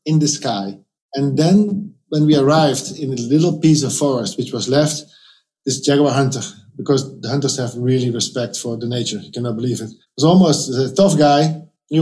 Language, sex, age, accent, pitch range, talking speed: English, male, 50-69, Dutch, 135-165 Hz, 200 wpm